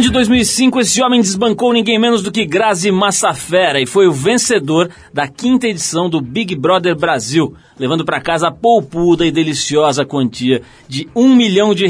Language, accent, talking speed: Portuguese, Brazilian, 175 wpm